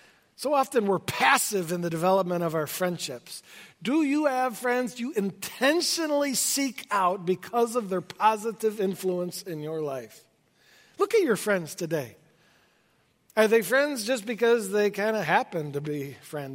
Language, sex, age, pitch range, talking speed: English, male, 50-69, 170-235 Hz, 155 wpm